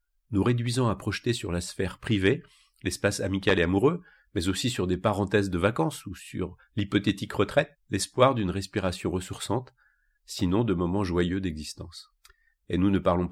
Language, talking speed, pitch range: French, 160 wpm, 90-115 Hz